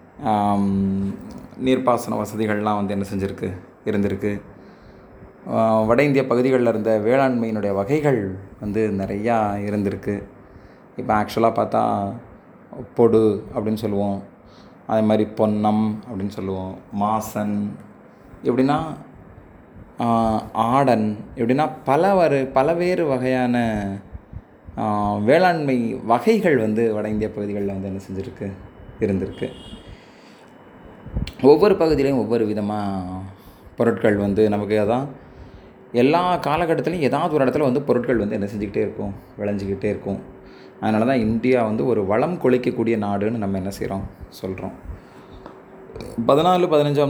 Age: 20-39